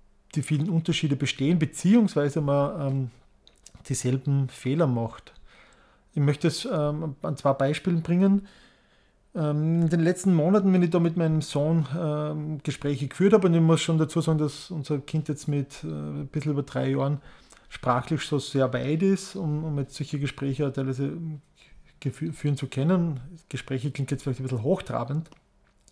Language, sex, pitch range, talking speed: German, male, 140-170 Hz, 160 wpm